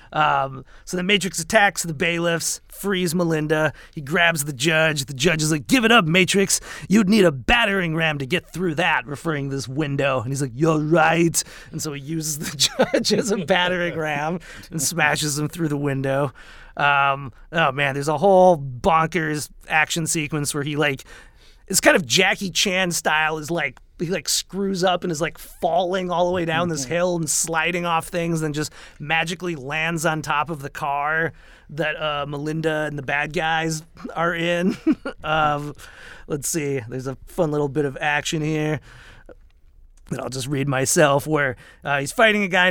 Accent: American